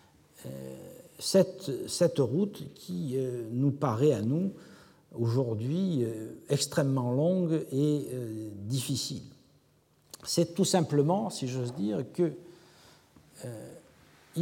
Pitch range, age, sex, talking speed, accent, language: 120-165 Hz, 60-79, male, 85 wpm, French, French